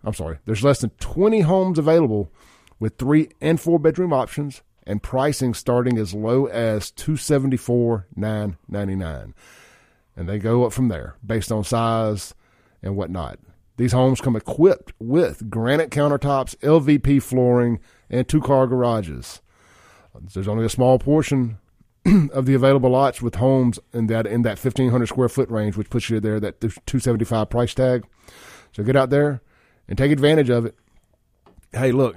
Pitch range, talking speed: 105-130 Hz, 145 wpm